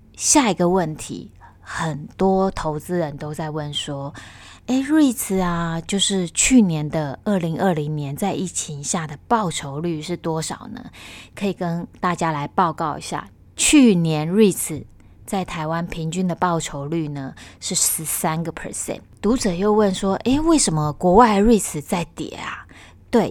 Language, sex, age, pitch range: Chinese, female, 20-39, 155-200 Hz